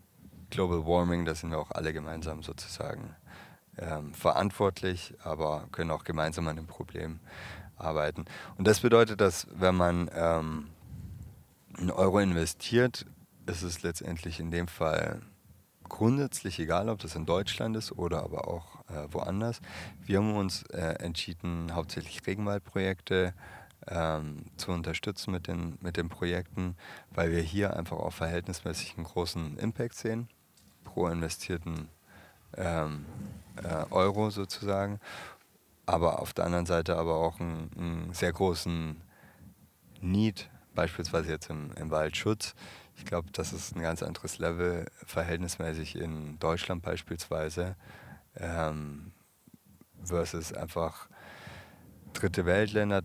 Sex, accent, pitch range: male, German, 80-95 Hz